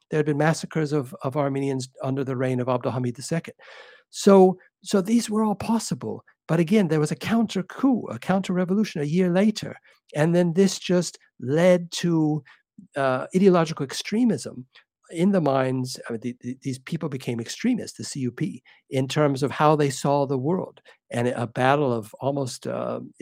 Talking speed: 175 wpm